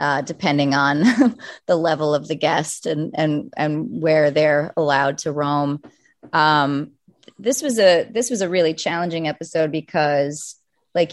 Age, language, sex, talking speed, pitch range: 30-49, English, female, 150 wpm, 150-180 Hz